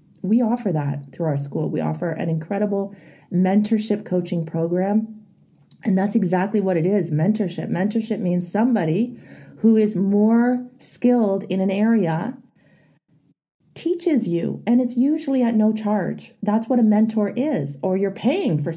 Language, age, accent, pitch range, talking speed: English, 30-49, American, 180-225 Hz, 150 wpm